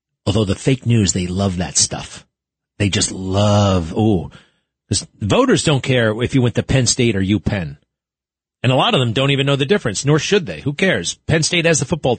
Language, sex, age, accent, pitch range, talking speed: English, male, 40-59, American, 100-140 Hz, 215 wpm